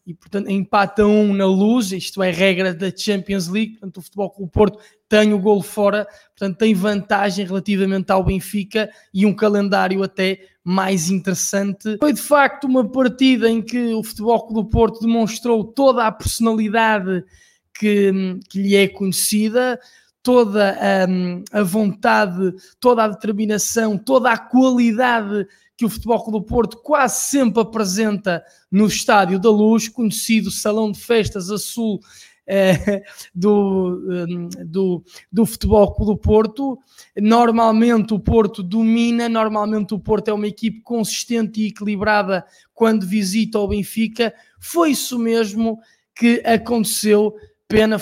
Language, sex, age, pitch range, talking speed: Portuguese, male, 20-39, 195-225 Hz, 145 wpm